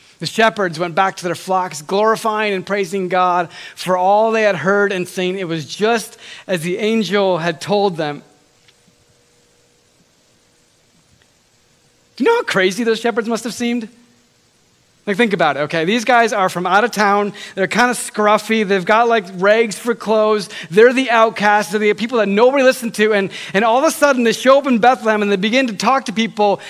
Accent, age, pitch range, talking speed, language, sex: American, 30-49, 195-270 Hz, 195 wpm, English, male